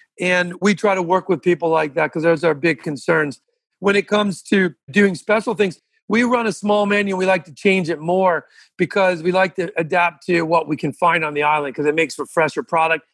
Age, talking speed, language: 40-59, 235 wpm, English